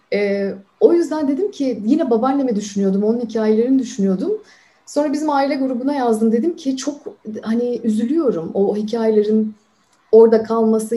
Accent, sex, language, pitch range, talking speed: native, female, Turkish, 210-265 Hz, 140 wpm